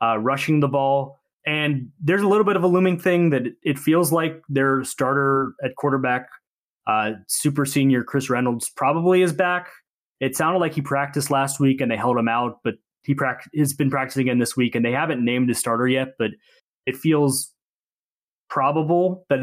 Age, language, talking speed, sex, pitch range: 20-39, English, 190 wpm, male, 125-160 Hz